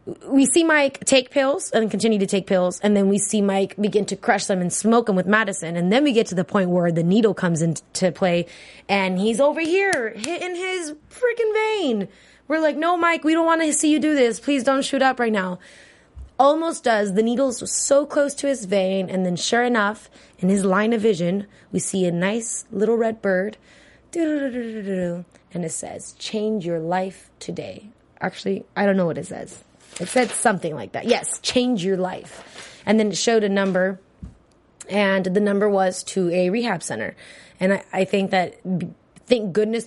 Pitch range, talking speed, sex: 185-230 Hz, 200 wpm, female